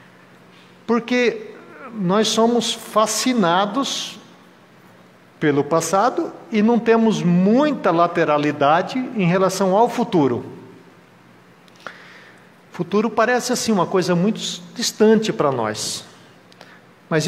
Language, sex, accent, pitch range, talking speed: Portuguese, male, Brazilian, 150-220 Hz, 90 wpm